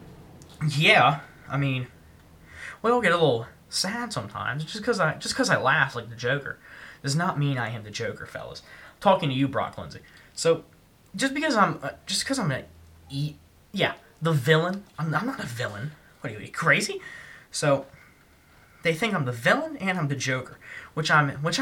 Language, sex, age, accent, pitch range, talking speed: English, male, 20-39, American, 130-170 Hz, 190 wpm